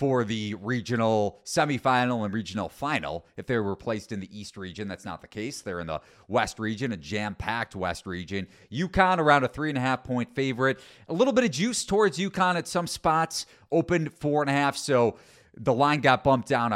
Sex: male